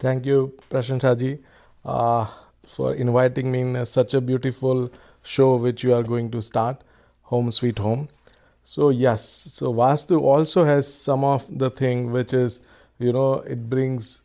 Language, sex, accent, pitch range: English, male, Indian, 120-135 Hz